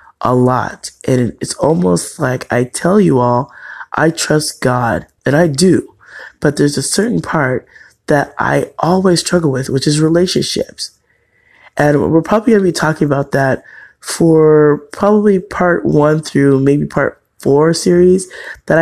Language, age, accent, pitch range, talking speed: English, 20-39, American, 130-165 Hz, 155 wpm